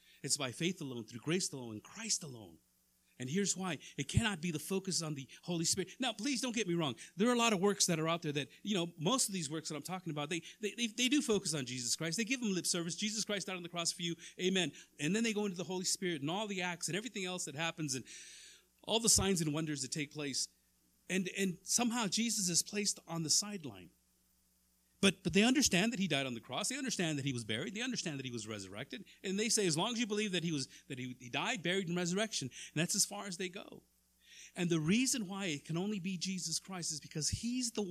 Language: English